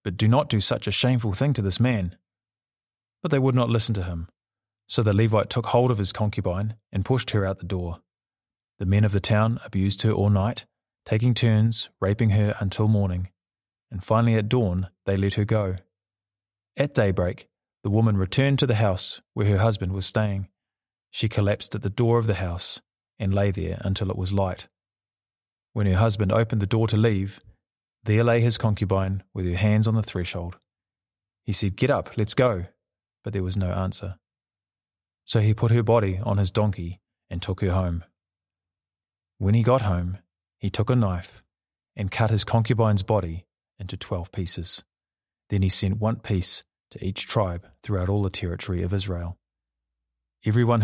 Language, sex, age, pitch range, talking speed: English, male, 20-39, 95-110 Hz, 185 wpm